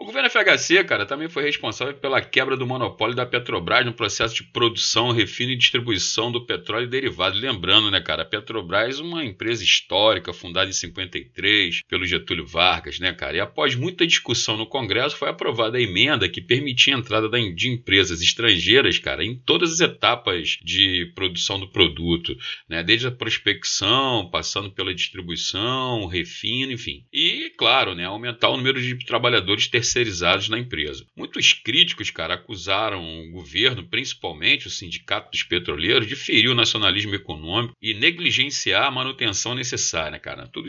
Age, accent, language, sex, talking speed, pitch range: 30-49, Brazilian, Portuguese, male, 160 wpm, 95-125 Hz